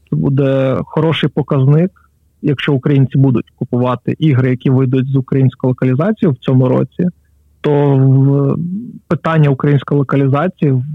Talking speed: 120 wpm